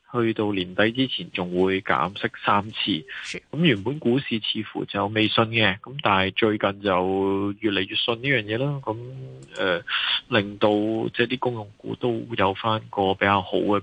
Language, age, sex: Chinese, 20-39, male